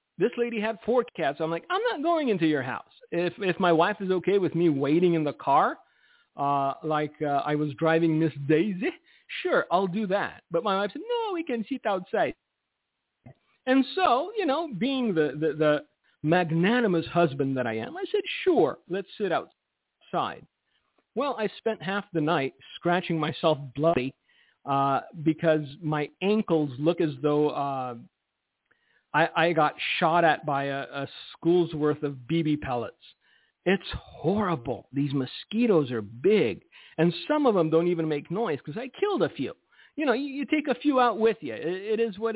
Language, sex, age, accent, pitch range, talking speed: English, male, 50-69, American, 150-210 Hz, 180 wpm